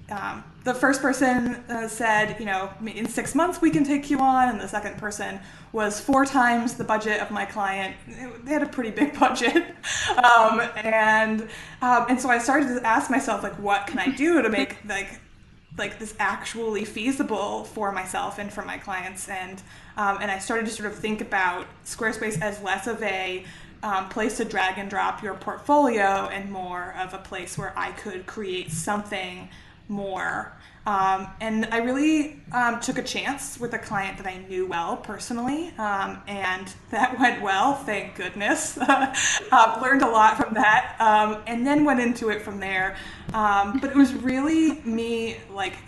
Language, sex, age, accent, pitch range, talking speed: English, female, 20-39, American, 200-245 Hz, 185 wpm